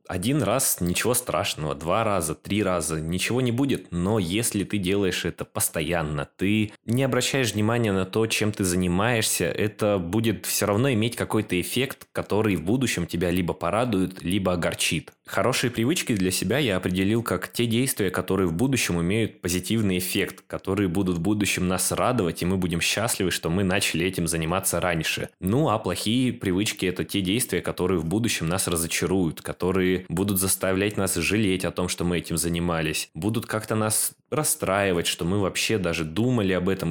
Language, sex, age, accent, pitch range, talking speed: Russian, male, 20-39, native, 85-105 Hz, 170 wpm